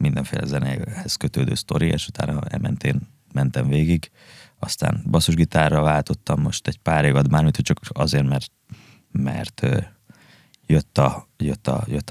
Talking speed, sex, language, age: 135 wpm, male, Hungarian, 20-39